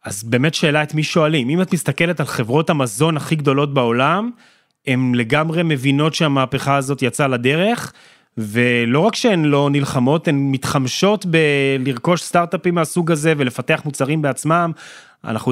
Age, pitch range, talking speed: 30-49, 125-165 Hz, 145 wpm